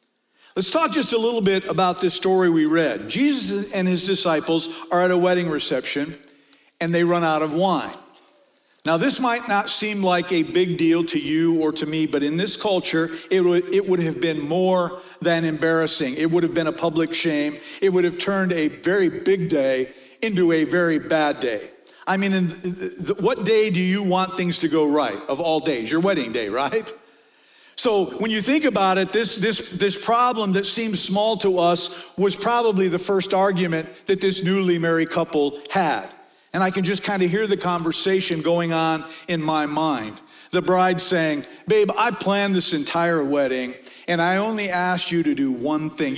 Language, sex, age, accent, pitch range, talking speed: English, male, 50-69, American, 165-225 Hz, 195 wpm